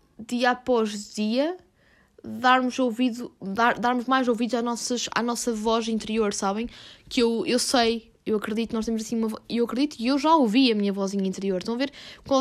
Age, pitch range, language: 10-29, 220-265 Hz, Portuguese